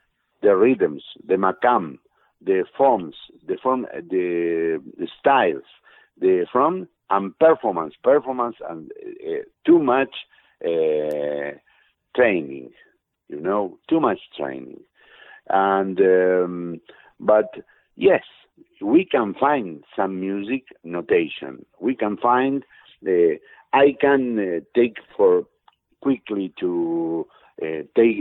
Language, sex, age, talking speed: English, male, 60-79, 105 wpm